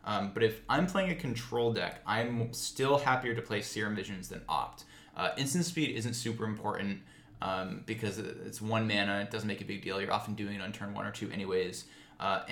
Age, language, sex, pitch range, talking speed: 20-39, English, male, 100-120 Hz, 215 wpm